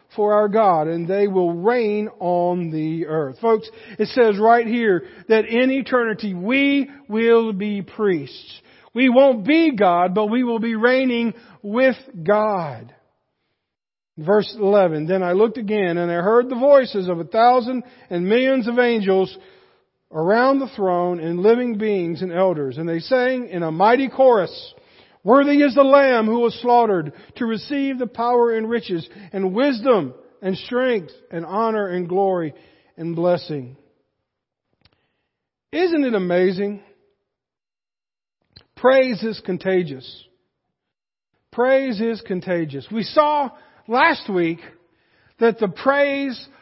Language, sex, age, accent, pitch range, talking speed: English, male, 50-69, American, 185-250 Hz, 135 wpm